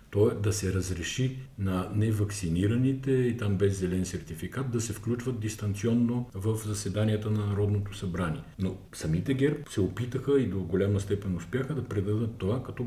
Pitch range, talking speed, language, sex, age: 85-110 Hz, 160 wpm, Bulgarian, male, 50-69